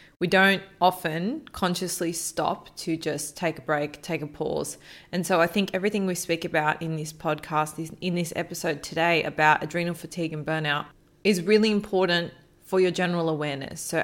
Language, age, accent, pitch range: English, 20-39, Australian, 160-185 Hz